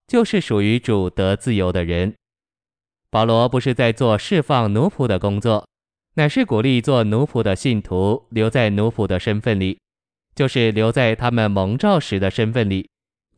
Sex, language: male, Chinese